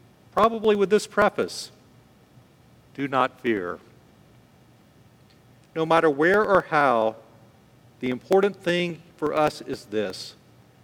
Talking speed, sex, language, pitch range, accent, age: 105 wpm, male, English, 125-160 Hz, American, 50-69